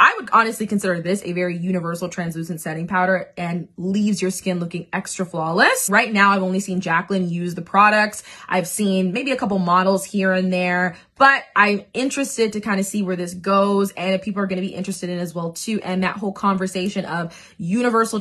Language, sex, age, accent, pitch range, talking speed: English, female, 20-39, American, 180-215 Hz, 210 wpm